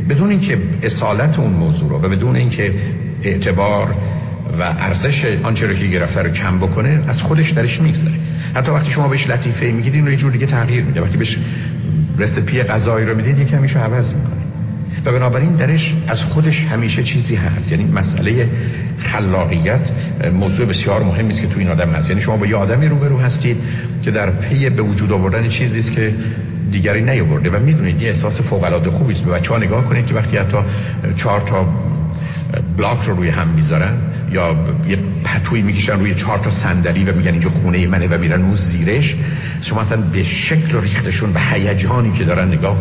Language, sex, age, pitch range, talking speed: Persian, male, 60-79, 100-145 Hz, 185 wpm